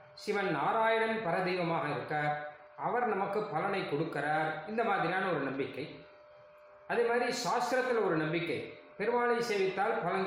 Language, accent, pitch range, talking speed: Tamil, native, 150-220 Hz, 115 wpm